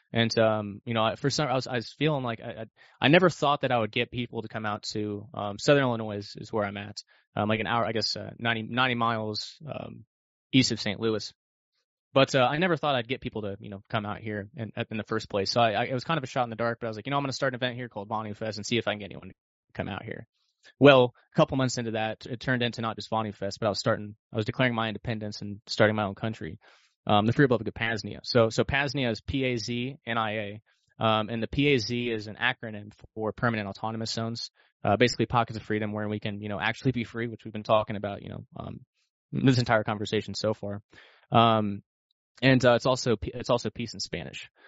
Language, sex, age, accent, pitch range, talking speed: English, male, 20-39, American, 105-125 Hz, 270 wpm